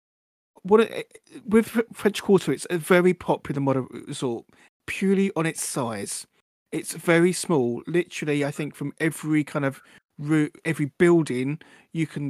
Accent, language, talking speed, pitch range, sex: British, English, 145 wpm, 145-185 Hz, male